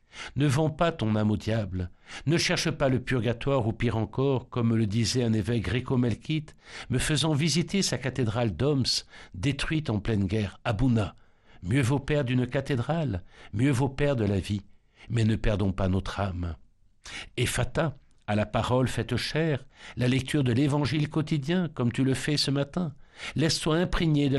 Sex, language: male, French